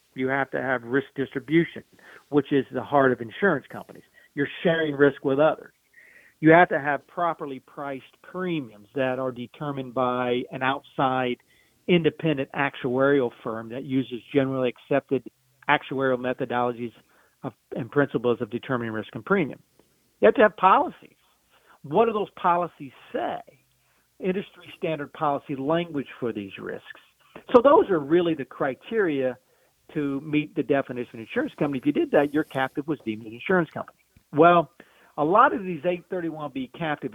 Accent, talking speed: American, 155 wpm